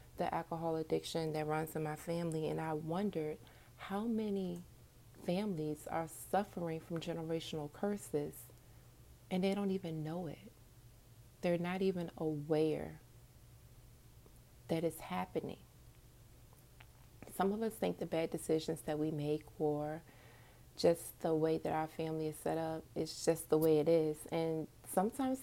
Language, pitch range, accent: English, 150-180 Hz, American